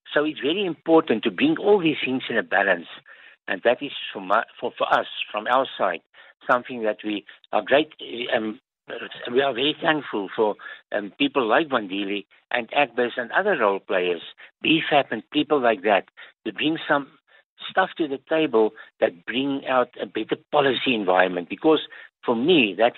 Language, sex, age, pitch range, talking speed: English, male, 60-79, 110-150 Hz, 180 wpm